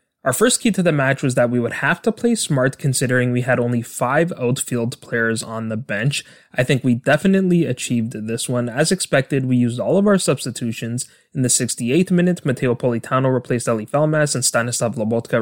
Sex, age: male, 20-39